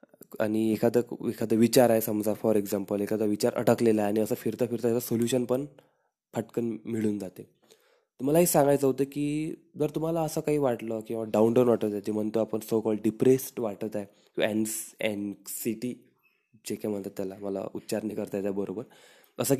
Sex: male